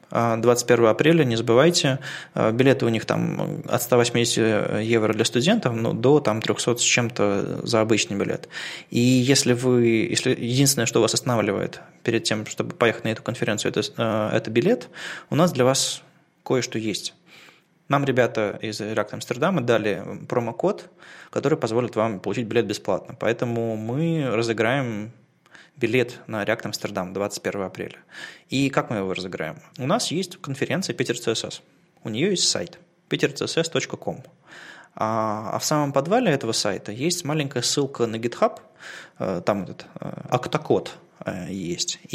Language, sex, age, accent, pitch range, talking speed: Russian, male, 20-39, native, 110-145 Hz, 140 wpm